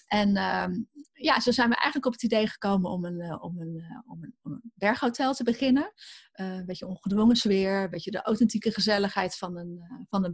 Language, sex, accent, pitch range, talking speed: Dutch, female, Dutch, 190-215 Hz, 175 wpm